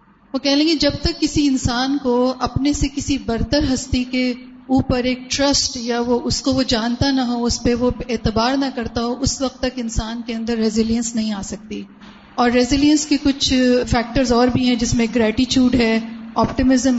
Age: 40-59